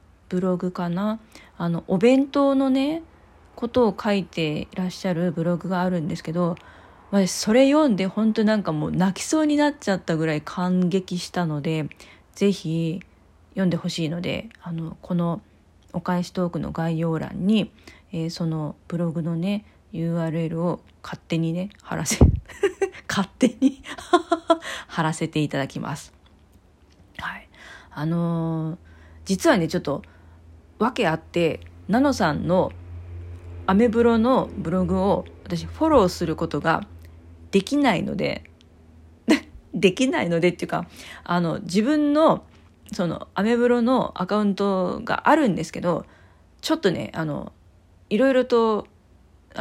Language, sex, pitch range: Japanese, female, 160-215 Hz